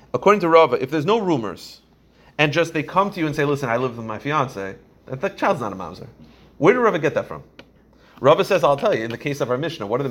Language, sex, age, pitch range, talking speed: English, male, 30-49, 135-205 Hz, 280 wpm